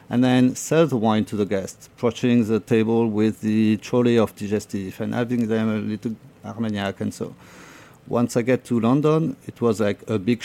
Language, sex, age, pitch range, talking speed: English, male, 40-59, 105-125 Hz, 195 wpm